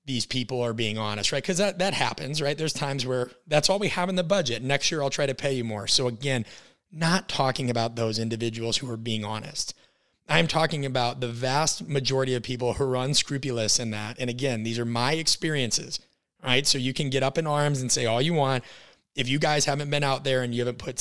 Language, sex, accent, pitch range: English, male, American, 120-145 Hz